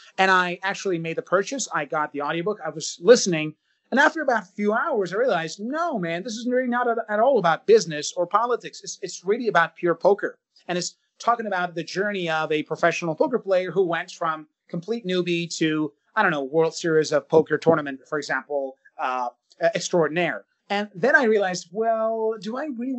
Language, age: English, 30-49